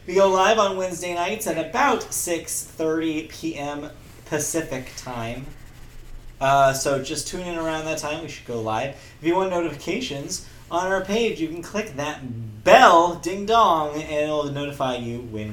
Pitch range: 115-175 Hz